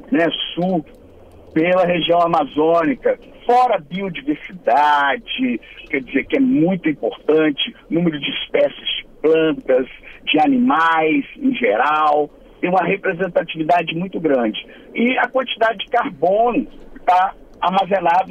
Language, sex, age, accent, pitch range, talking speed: Portuguese, male, 50-69, Brazilian, 165-245 Hz, 115 wpm